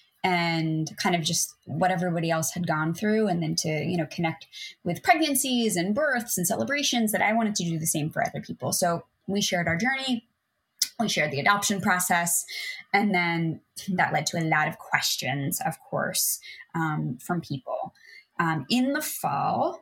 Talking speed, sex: 180 wpm, female